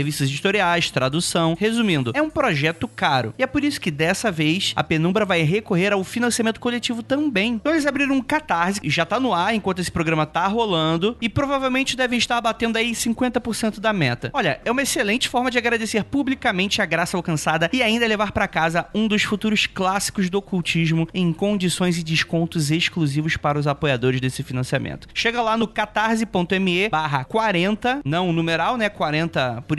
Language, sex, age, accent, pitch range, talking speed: Portuguese, male, 20-39, Brazilian, 170-225 Hz, 180 wpm